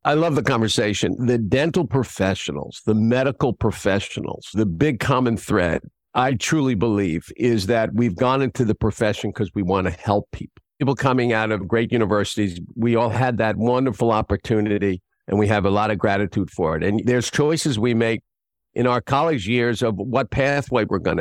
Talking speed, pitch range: 185 wpm, 110-140 Hz